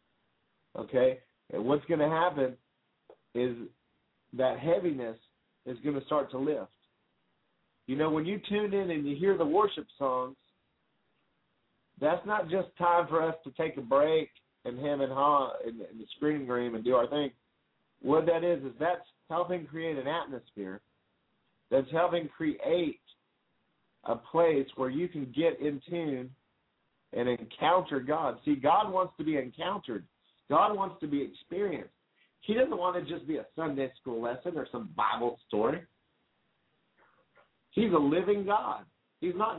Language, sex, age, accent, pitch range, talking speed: English, male, 50-69, American, 130-175 Hz, 160 wpm